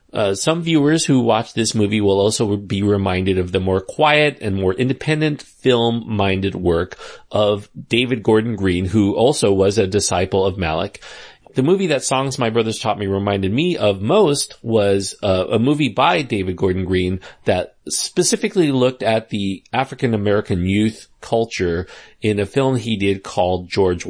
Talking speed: 165 wpm